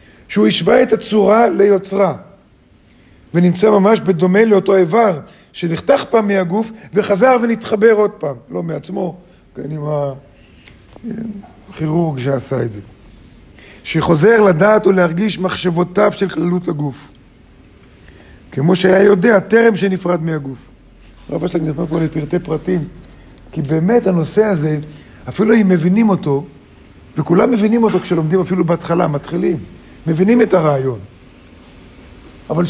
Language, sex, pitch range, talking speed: Hebrew, male, 150-200 Hz, 115 wpm